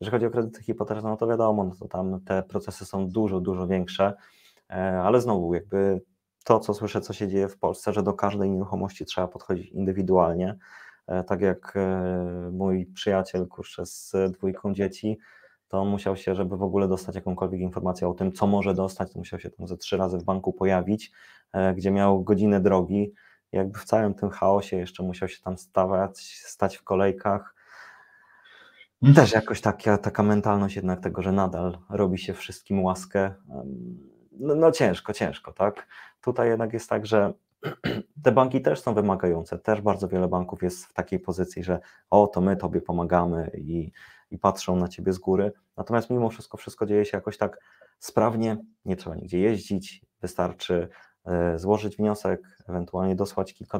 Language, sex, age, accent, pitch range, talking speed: Polish, male, 20-39, native, 95-105 Hz, 170 wpm